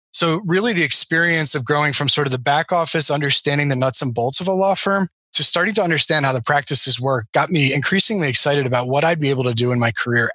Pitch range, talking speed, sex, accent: 130-155 Hz, 250 wpm, male, American